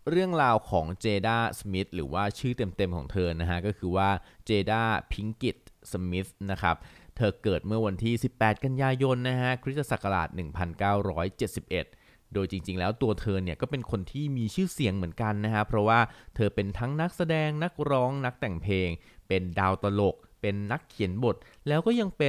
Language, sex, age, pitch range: Thai, male, 20-39, 90-120 Hz